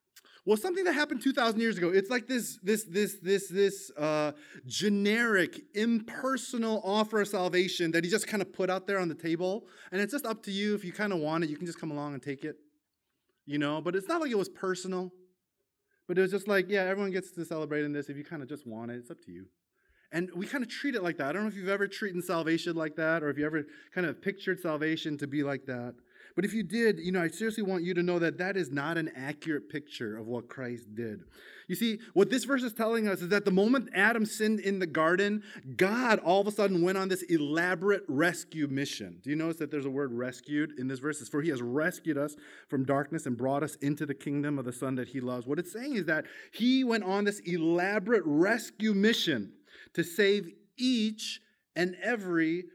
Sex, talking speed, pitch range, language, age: male, 240 wpm, 155-215 Hz, English, 20-39